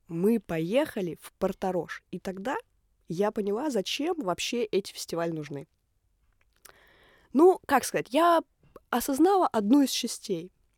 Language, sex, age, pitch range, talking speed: Russian, female, 20-39, 185-235 Hz, 115 wpm